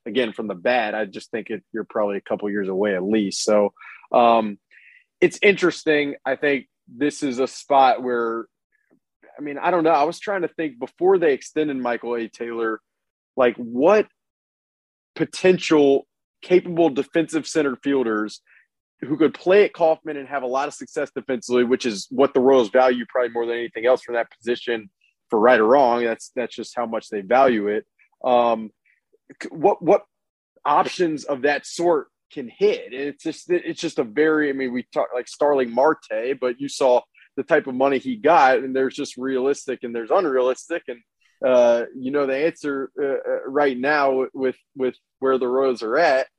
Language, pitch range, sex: English, 125-160 Hz, male